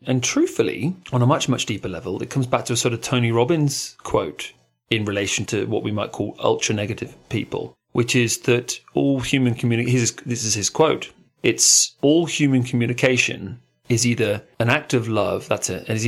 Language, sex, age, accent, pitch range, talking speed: English, male, 30-49, British, 115-150 Hz, 180 wpm